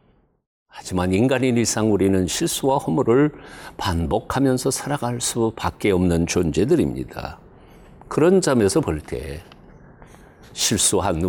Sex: male